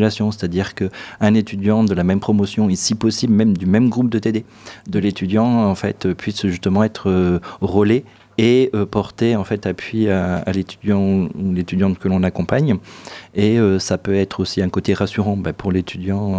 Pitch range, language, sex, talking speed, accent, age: 95-110 Hz, French, male, 185 wpm, French, 30-49